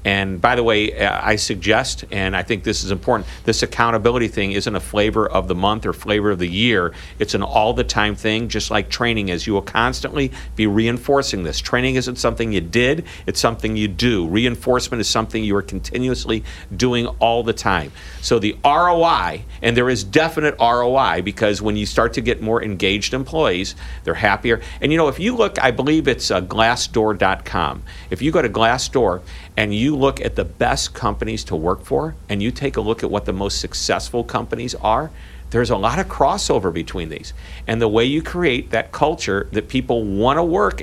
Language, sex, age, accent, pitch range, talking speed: English, male, 50-69, American, 100-130 Hz, 200 wpm